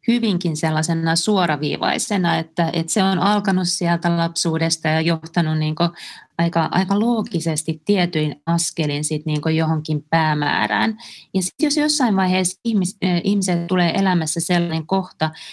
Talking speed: 130 wpm